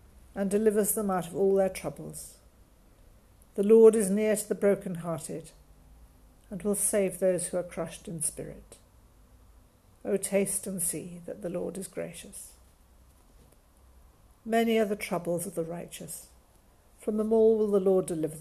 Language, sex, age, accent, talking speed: English, female, 60-79, British, 155 wpm